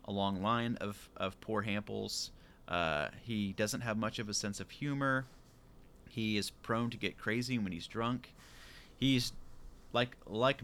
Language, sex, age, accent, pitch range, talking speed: English, male, 30-49, American, 95-120 Hz, 165 wpm